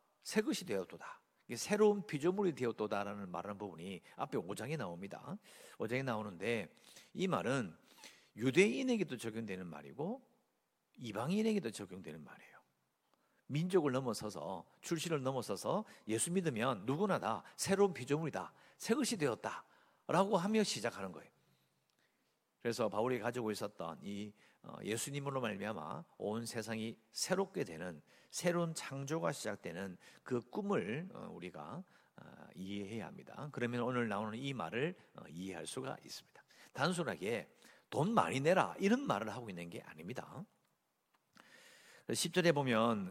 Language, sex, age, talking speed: English, male, 50-69, 105 wpm